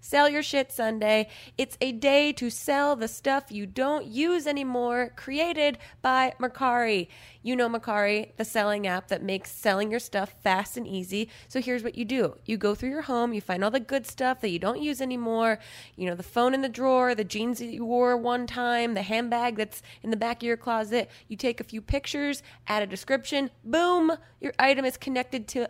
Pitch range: 215-260 Hz